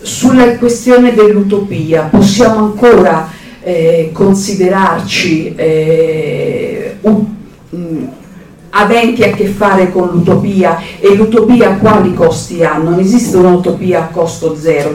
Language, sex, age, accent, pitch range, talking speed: Italian, female, 50-69, native, 180-225 Hz, 110 wpm